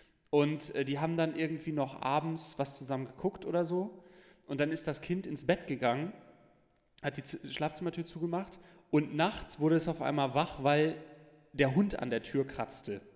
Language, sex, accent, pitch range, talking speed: German, male, German, 130-160 Hz, 175 wpm